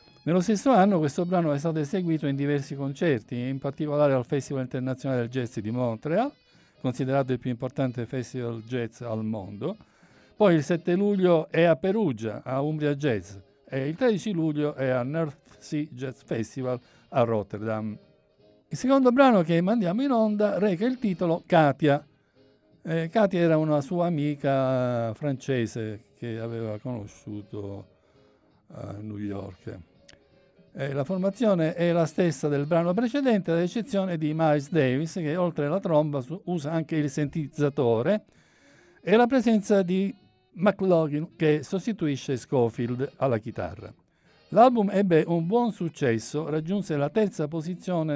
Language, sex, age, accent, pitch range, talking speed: Italian, male, 60-79, native, 130-180 Hz, 145 wpm